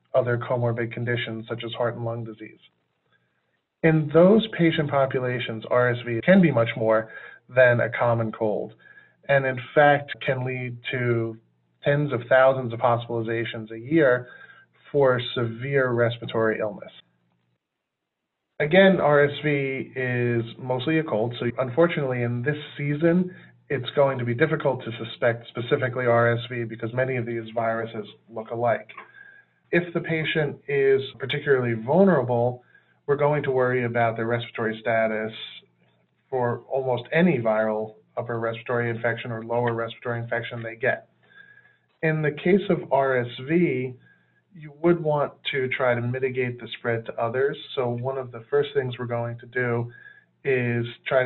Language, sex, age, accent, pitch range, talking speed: English, male, 40-59, American, 115-140 Hz, 140 wpm